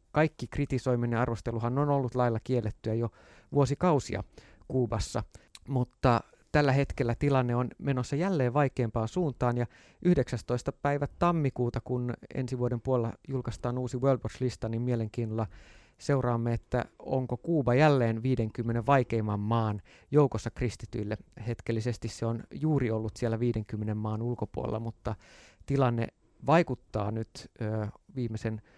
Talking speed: 120 wpm